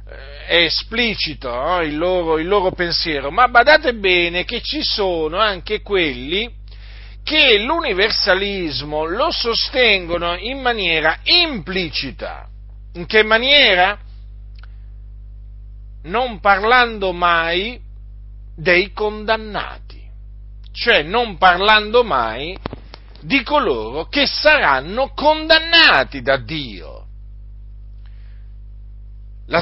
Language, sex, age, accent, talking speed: Italian, male, 50-69, native, 85 wpm